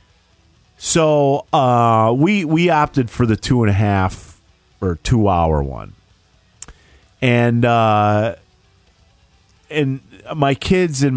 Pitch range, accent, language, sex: 95-125 Hz, American, English, male